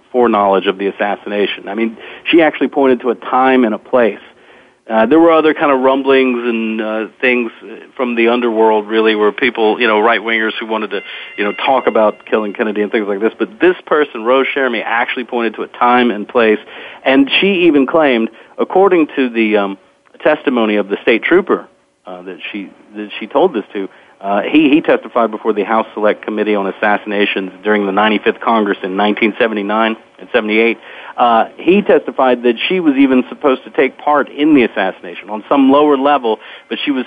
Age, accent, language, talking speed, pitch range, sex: 40-59, American, English, 195 wpm, 105-130 Hz, male